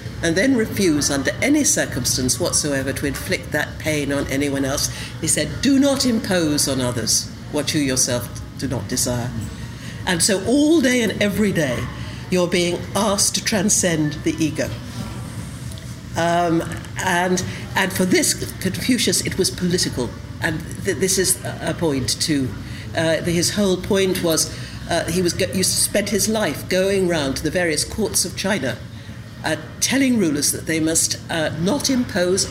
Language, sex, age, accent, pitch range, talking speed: English, female, 60-79, British, 125-180 Hz, 160 wpm